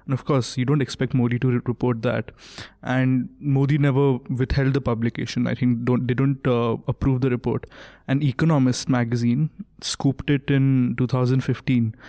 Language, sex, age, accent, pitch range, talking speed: English, male, 20-39, Indian, 125-145 Hz, 155 wpm